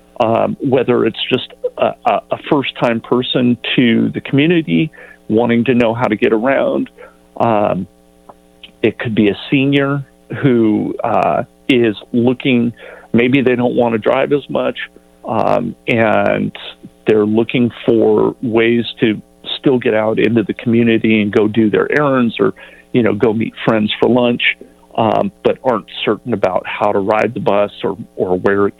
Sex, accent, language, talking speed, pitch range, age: male, American, English, 160 wpm, 105-125 Hz, 40-59